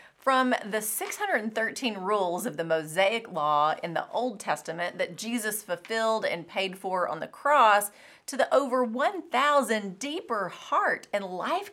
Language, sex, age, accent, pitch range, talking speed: English, female, 30-49, American, 180-255 Hz, 150 wpm